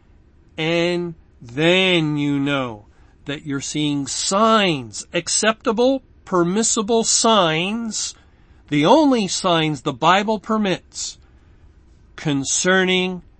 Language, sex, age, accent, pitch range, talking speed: English, male, 50-69, American, 145-185 Hz, 80 wpm